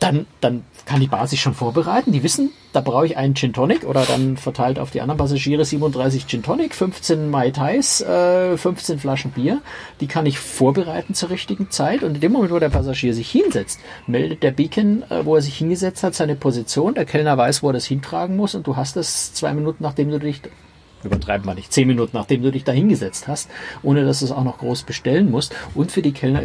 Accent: German